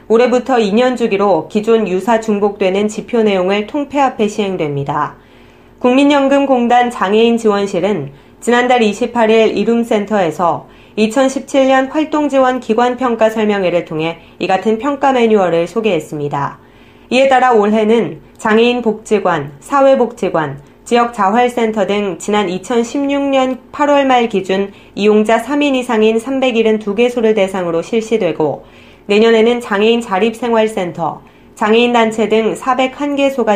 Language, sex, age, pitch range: Korean, female, 30-49, 190-245 Hz